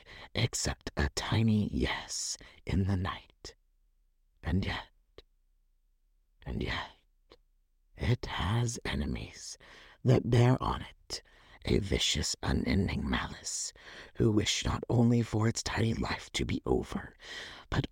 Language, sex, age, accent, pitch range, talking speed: English, male, 50-69, American, 85-135 Hz, 115 wpm